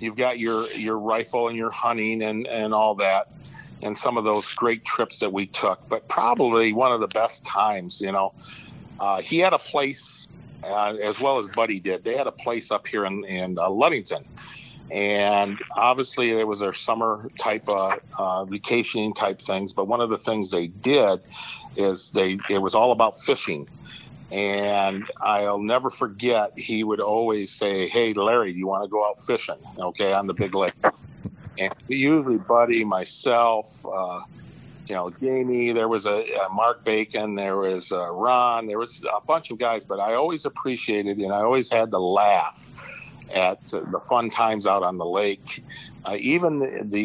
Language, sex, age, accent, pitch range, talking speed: English, male, 50-69, American, 100-125 Hz, 180 wpm